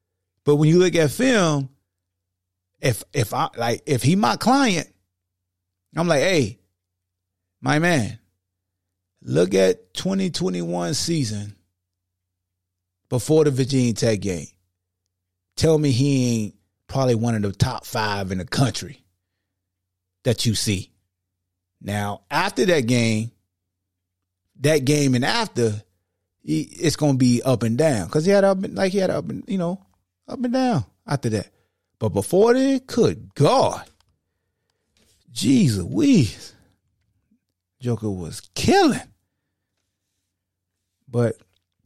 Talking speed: 120 wpm